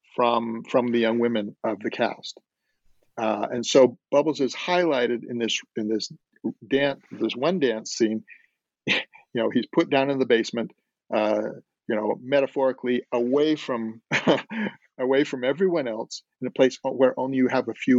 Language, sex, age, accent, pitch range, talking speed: English, male, 50-69, American, 120-150 Hz, 165 wpm